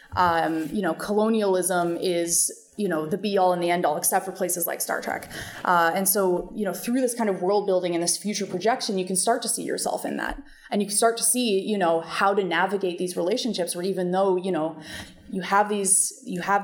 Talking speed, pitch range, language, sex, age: 240 wpm, 175-210 Hz, English, female, 20-39